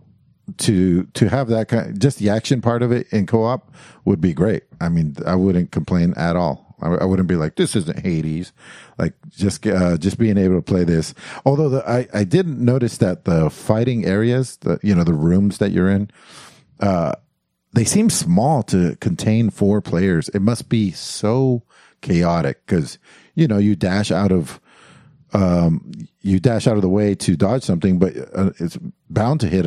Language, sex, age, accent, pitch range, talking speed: English, male, 50-69, American, 90-130 Hz, 195 wpm